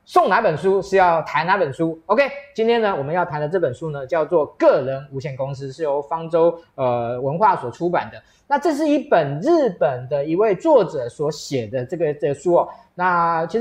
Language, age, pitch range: Chinese, 20-39, 135-185 Hz